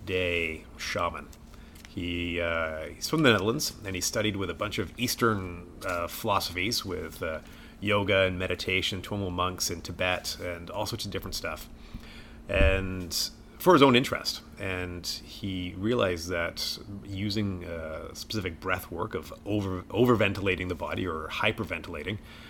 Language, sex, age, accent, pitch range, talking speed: English, male, 30-49, American, 85-100 Hz, 145 wpm